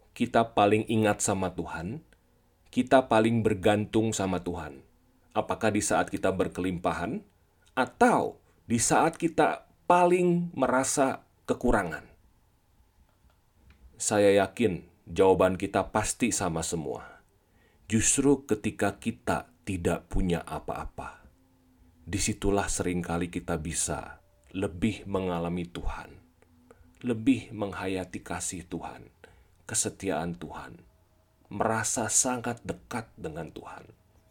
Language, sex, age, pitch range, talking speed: Indonesian, male, 40-59, 85-110 Hz, 95 wpm